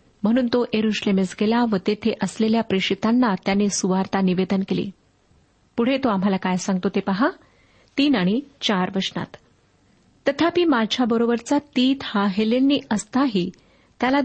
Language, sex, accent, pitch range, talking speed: Marathi, female, native, 195-260 Hz, 115 wpm